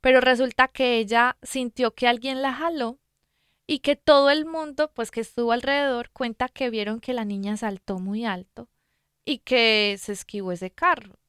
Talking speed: 175 wpm